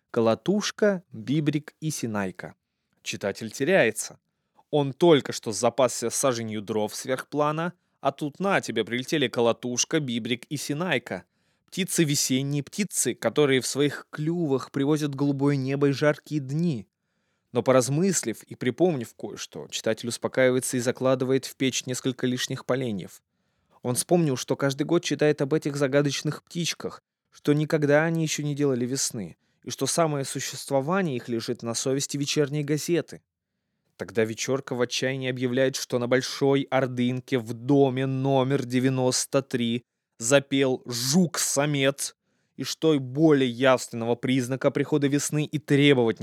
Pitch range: 120-145 Hz